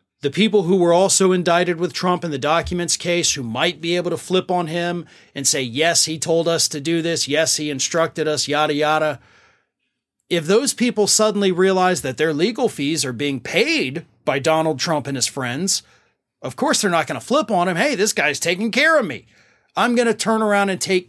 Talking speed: 215 wpm